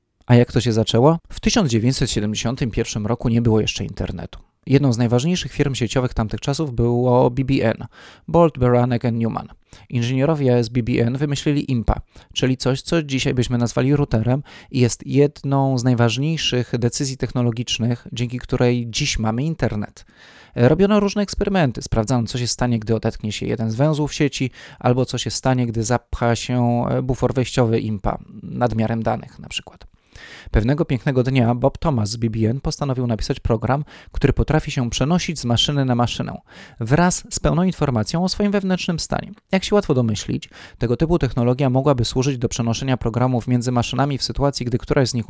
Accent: native